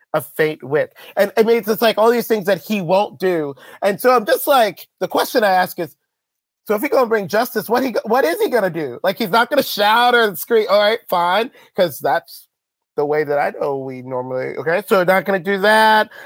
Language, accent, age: English, American, 30-49